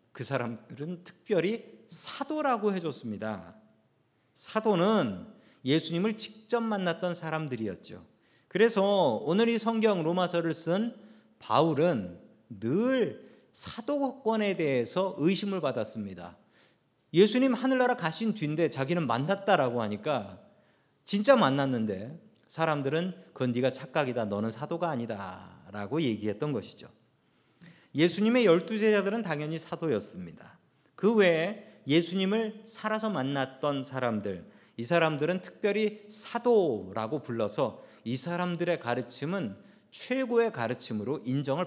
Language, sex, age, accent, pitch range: Korean, male, 40-59, native, 125-210 Hz